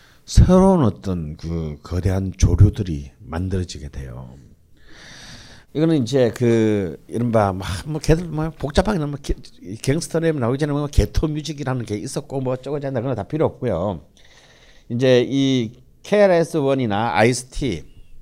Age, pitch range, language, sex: 60-79, 105-155 Hz, Korean, male